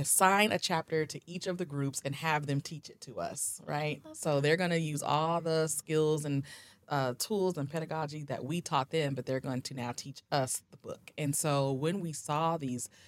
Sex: female